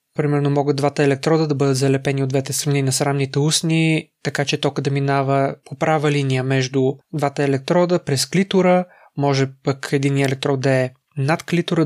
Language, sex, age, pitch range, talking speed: Bulgarian, male, 20-39, 140-160 Hz, 170 wpm